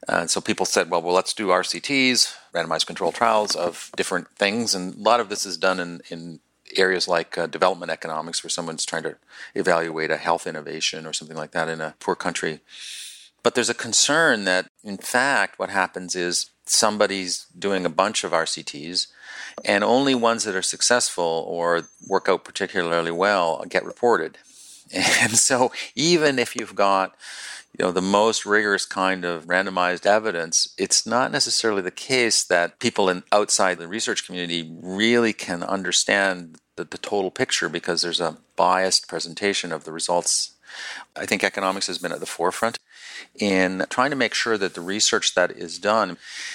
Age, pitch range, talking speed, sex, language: 40-59, 85-105 Hz, 175 wpm, male, English